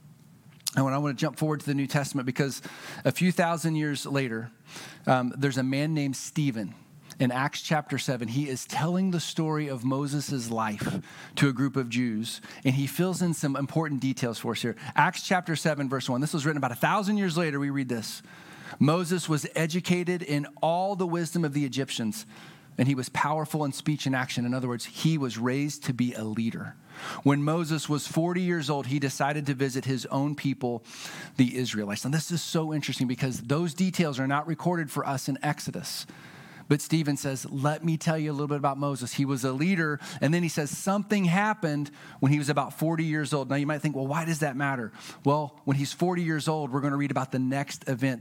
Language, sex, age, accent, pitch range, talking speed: English, male, 40-59, American, 135-160 Hz, 220 wpm